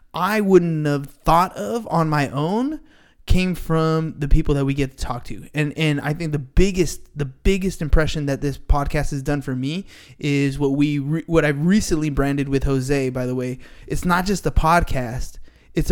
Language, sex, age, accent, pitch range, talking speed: English, male, 20-39, American, 135-165 Hz, 200 wpm